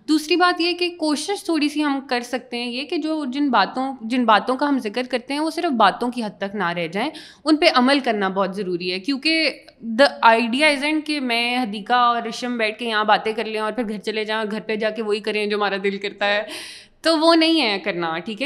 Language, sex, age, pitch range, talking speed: Urdu, female, 20-39, 210-275 Hz, 245 wpm